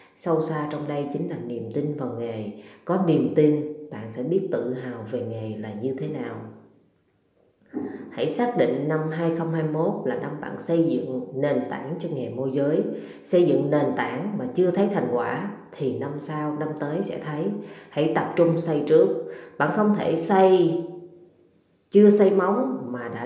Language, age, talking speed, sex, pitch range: Vietnamese, 20-39, 180 wpm, female, 130-170 Hz